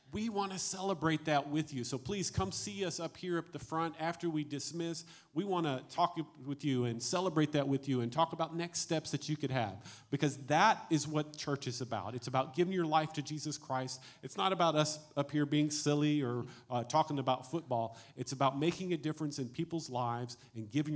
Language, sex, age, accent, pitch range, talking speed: English, male, 40-59, American, 130-165 Hz, 225 wpm